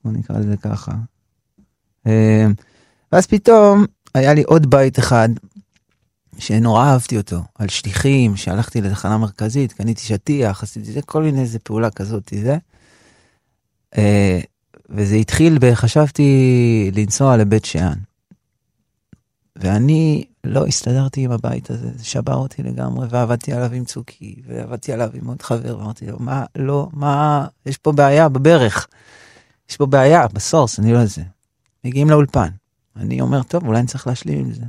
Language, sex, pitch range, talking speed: Hebrew, male, 110-140 Hz, 130 wpm